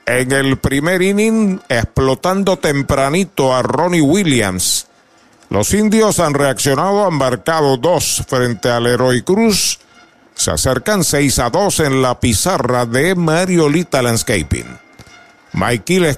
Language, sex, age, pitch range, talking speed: Spanish, male, 50-69, 125-165 Hz, 120 wpm